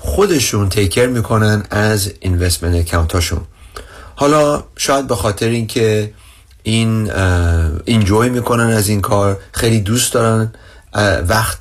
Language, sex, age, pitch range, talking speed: Persian, male, 40-59, 95-120 Hz, 110 wpm